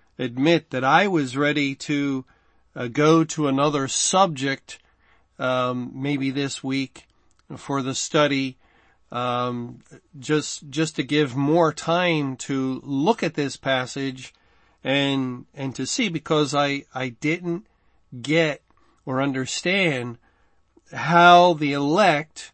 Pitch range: 135-160 Hz